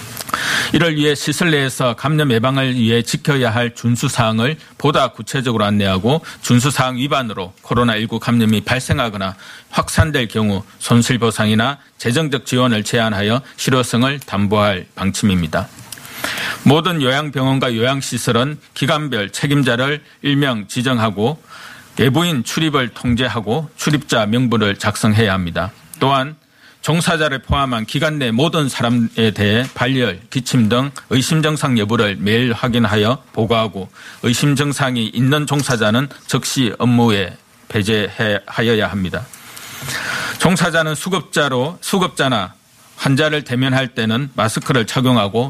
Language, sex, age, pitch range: Korean, male, 40-59, 115-140 Hz